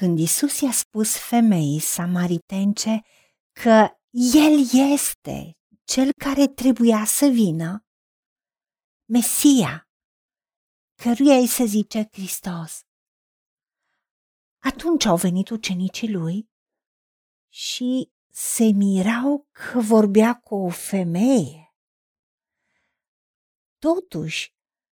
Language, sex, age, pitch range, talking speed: Romanian, female, 50-69, 205-285 Hz, 80 wpm